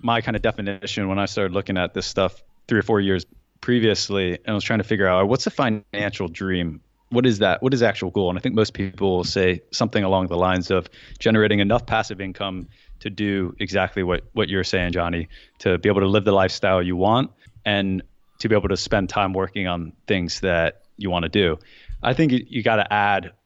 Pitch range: 95-110 Hz